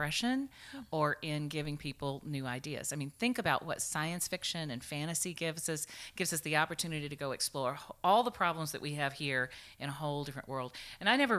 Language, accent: English, American